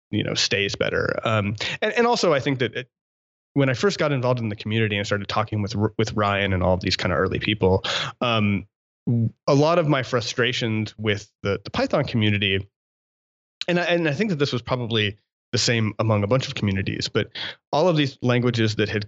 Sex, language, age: male, English, 30-49